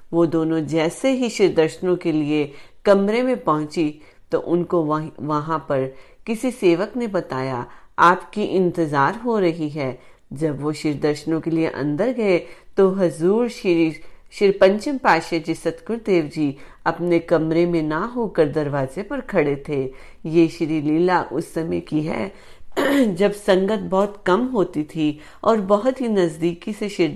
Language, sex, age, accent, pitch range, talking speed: Hindi, female, 30-49, native, 155-195 Hz, 150 wpm